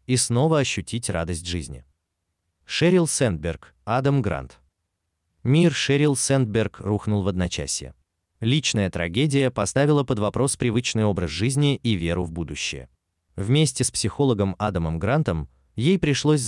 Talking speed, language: 125 wpm, Russian